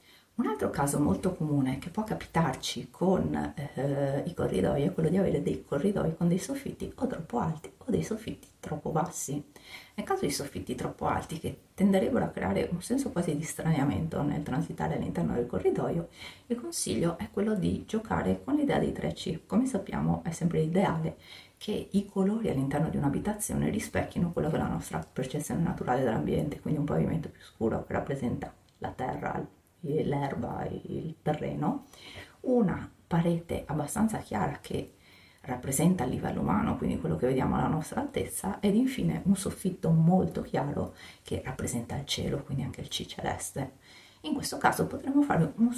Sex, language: female, Italian